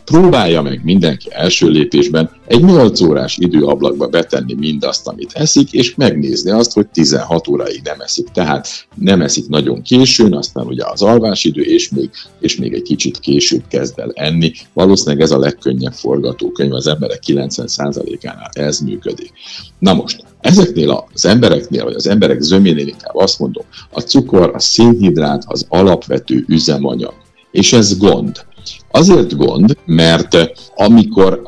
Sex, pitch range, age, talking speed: male, 75-115 Hz, 50-69, 145 wpm